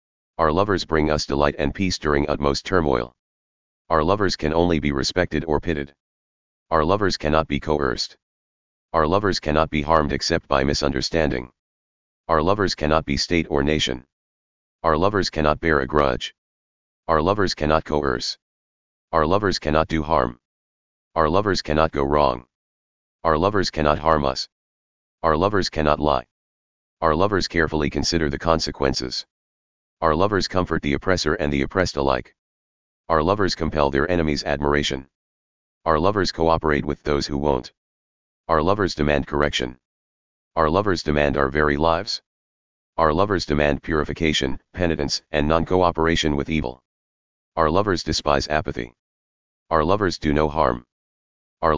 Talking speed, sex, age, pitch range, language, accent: 145 wpm, male, 30-49, 65-75 Hz, English, American